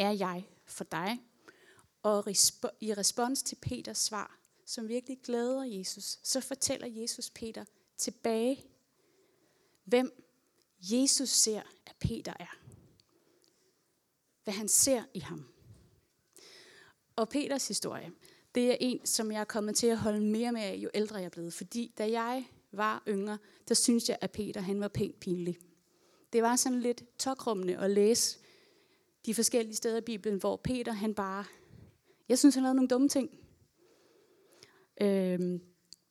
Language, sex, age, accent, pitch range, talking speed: Danish, female, 30-49, native, 205-255 Hz, 150 wpm